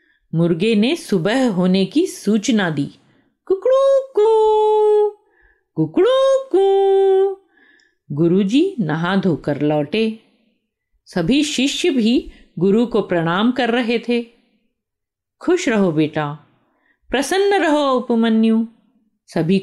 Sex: female